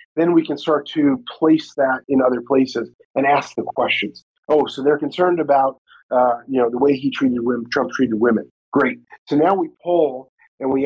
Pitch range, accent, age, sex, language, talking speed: 125-160 Hz, American, 40-59, male, English, 205 wpm